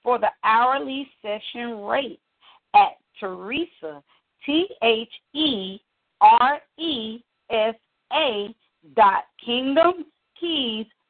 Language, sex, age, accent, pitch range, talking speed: English, female, 40-59, American, 205-305 Hz, 90 wpm